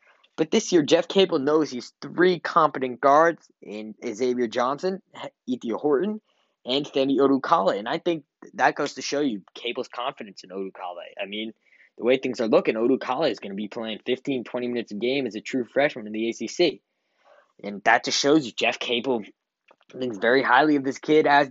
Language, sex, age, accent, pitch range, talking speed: English, male, 20-39, American, 120-155 Hz, 190 wpm